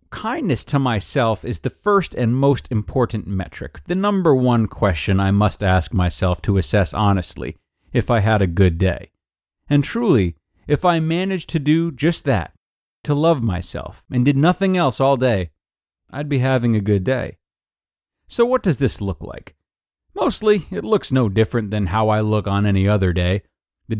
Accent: American